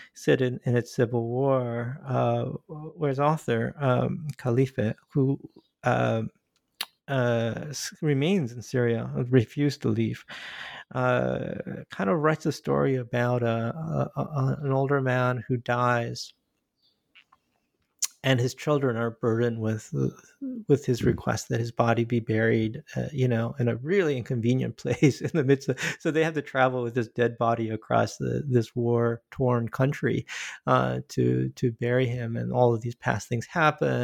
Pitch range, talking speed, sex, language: 115-145 Hz, 150 wpm, male, English